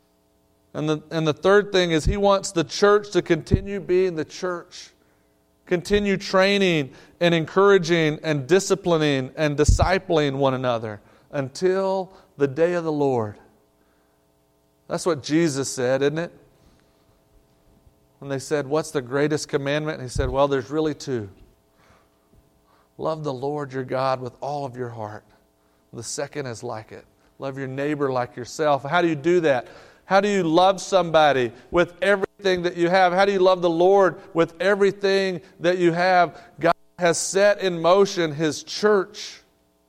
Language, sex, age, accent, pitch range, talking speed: English, male, 40-59, American, 130-190 Hz, 160 wpm